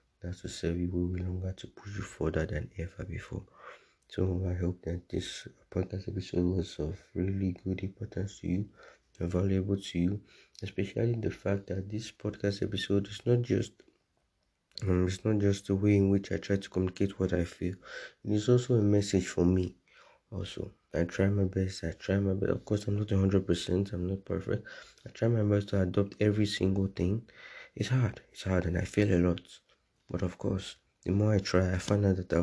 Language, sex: English, male